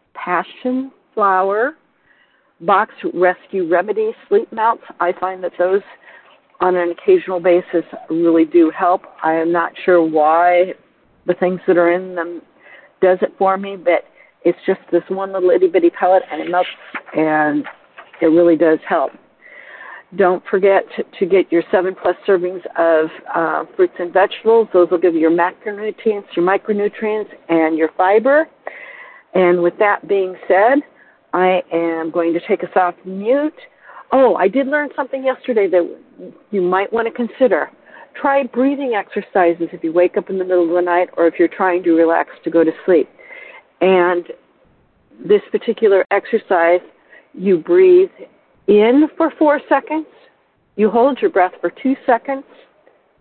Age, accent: 50-69, American